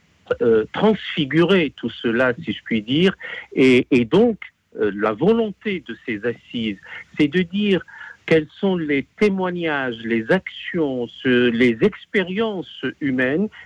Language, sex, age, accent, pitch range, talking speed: French, male, 60-79, French, 115-175 Hz, 130 wpm